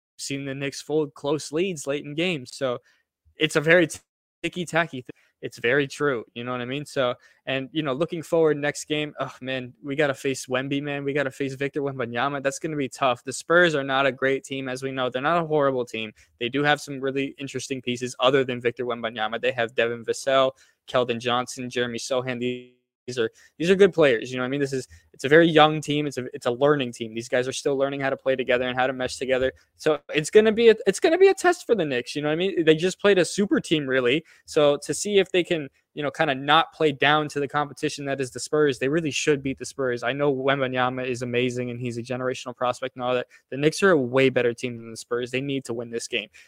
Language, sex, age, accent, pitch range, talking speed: English, male, 20-39, American, 125-150 Hz, 265 wpm